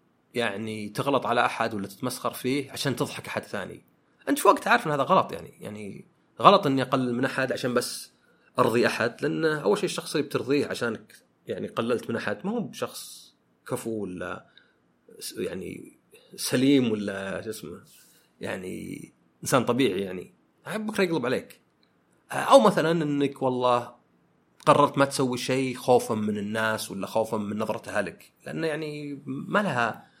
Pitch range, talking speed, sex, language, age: 120-155 Hz, 150 wpm, male, Arabic, 30-49